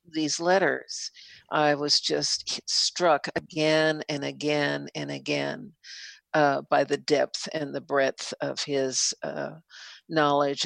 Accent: American